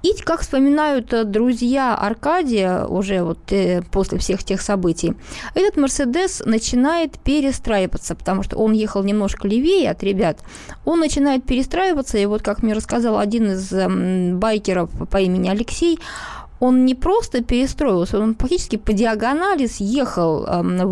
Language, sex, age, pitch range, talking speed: Russian, female, 20-39, 195-275 Hz, 135 wpm